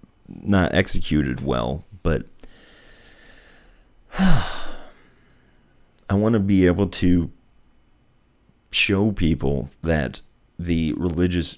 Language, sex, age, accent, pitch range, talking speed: English, male, 30-49, American, 75-90 Hz, 80 wpm